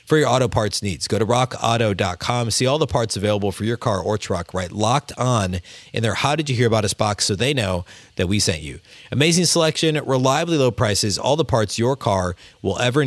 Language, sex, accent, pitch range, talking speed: English, male, American, 105-135 Hz, 225 wpm